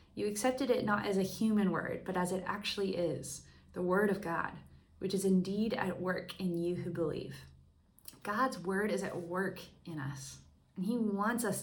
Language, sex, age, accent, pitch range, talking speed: English, female, 20-39, American, 165-195 Hz, 190 wpm